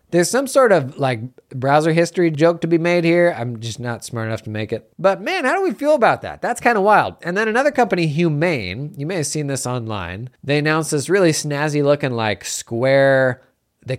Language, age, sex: English, 30-49, male